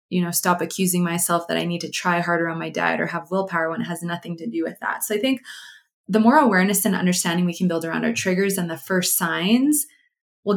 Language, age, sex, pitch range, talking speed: English, 20-39, female, 175-205 Hz, 250 wpm